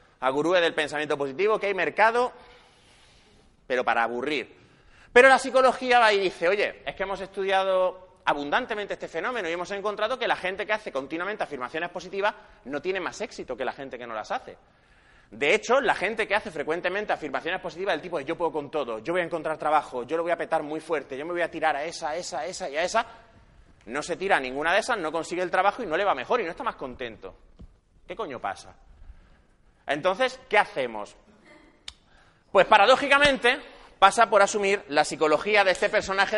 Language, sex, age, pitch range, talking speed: Spanish, male, 30-49, 155-215 Hz, 210 wpm